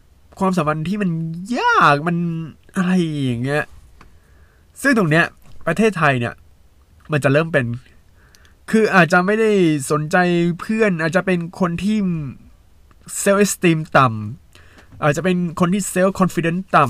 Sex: male